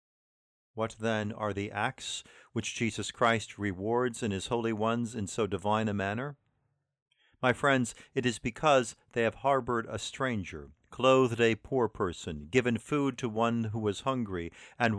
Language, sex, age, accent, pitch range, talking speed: English, male, 50-69, American, 100-120 Hz, 160 wpm